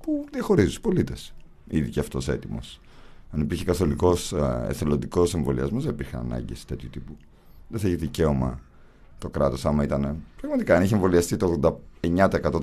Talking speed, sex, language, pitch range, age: 155 wpm, male, Greek, 70-90 Hz, 50-69